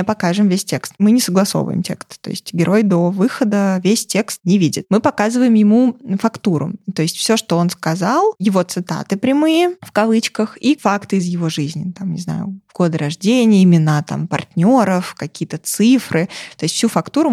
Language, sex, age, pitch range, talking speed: Russian, female, 20-39, 175-220 Hz, 175 wpm